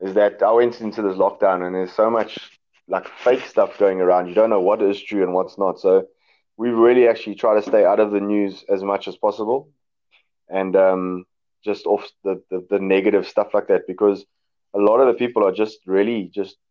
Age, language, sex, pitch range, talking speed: 20-39, English, male, 95-110 Hz, 220 wpm